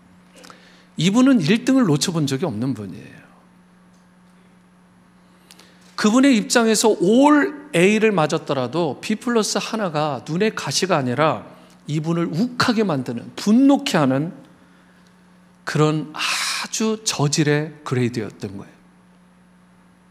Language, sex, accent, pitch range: Korean, male, native, 140-210 Hz